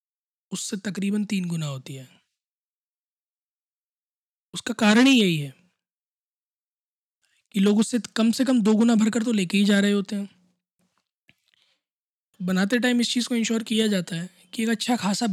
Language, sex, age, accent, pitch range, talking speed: Hindi, male, 20-39, native, 180-220 Hz, 155 wpm